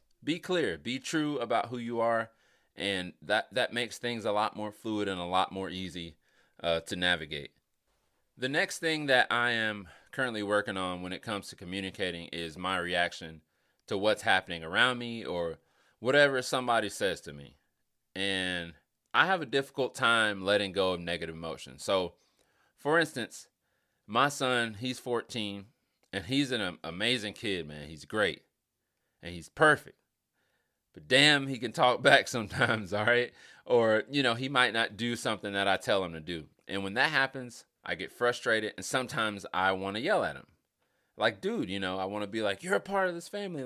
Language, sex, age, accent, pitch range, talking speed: English, male, 30-49, American, 95-130 Hz, 185 wpm